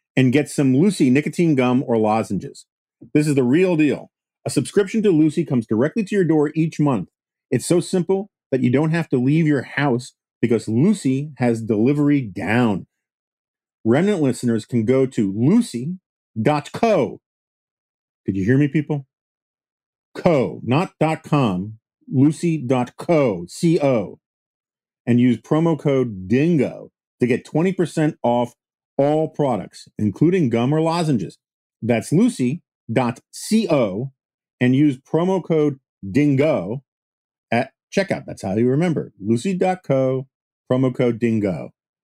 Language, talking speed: English, 125 wpm